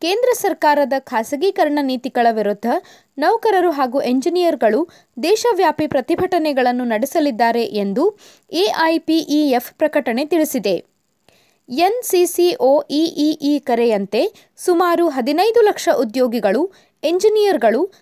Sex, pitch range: female, 260-360 Hz